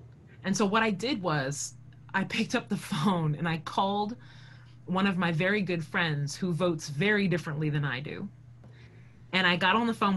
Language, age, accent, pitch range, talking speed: English, 30-49, American, 130-215 Hz, 195 wpm